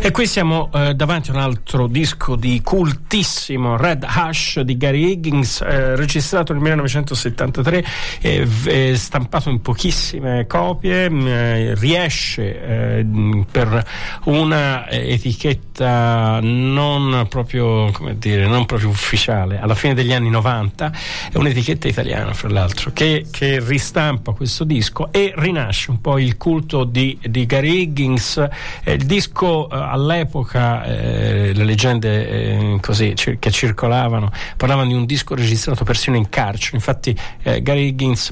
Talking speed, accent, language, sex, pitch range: 140 wpm, native, Italian, male, 115-145 Hz